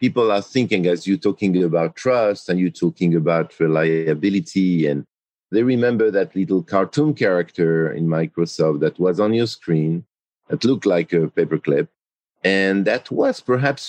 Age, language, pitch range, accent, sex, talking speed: 50-69, English, 85-120 Hz, French, male, 155 wpm